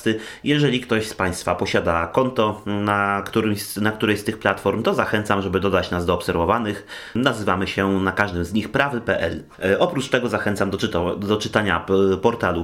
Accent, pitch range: native, 95-115 Hz